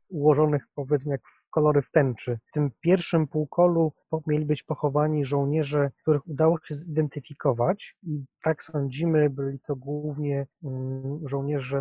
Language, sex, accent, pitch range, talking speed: Polish, male, native, 135-155 Hz, 130 wpm